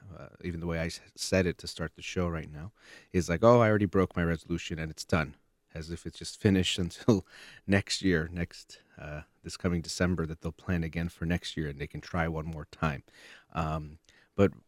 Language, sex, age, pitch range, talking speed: English, male, 30-49, 80-95 Hz, 215 wpm